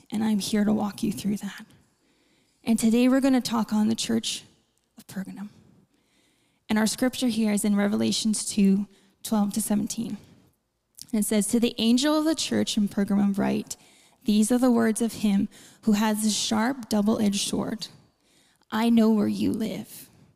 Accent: American